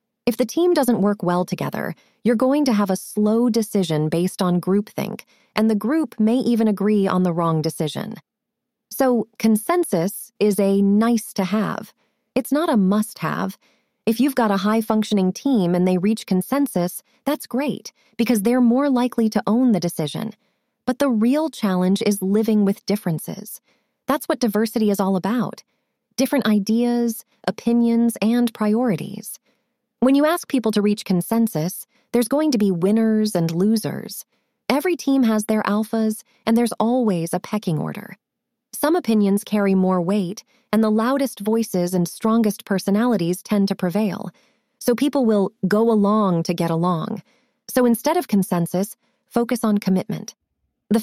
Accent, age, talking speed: American, 30-49, 155 wpm